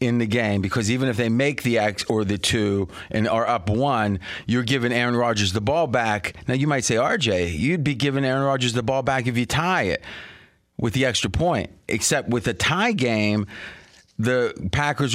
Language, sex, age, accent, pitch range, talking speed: English, male, 30-49, American, 100-130 Hz, 205 wpm